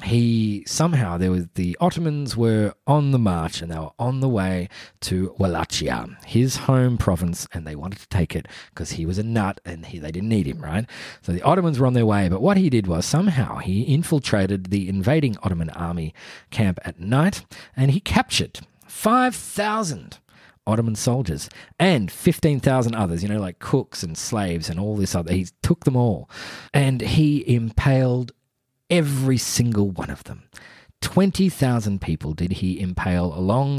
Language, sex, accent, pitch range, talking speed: English, male, Australian, 90-130 Hz, 175 wpm